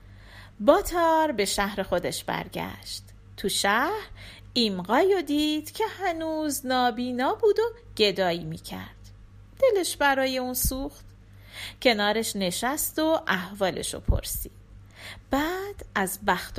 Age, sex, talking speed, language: 40-59, female, 100 wpm, Persian